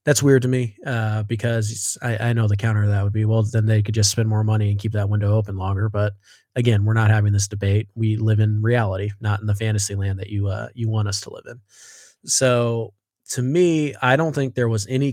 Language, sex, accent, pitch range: English, male, American, 105-120 Hz